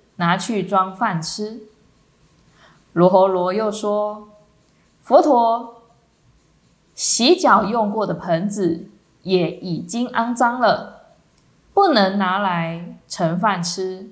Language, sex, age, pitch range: Chinese, female, 20-39, 185-235 Hz